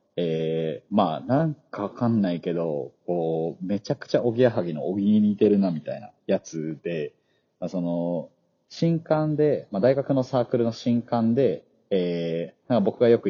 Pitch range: 90-125 Hz